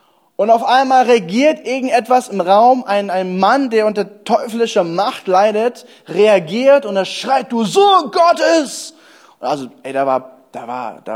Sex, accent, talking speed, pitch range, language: male, German, 160 wpm, 165-230 Hz, German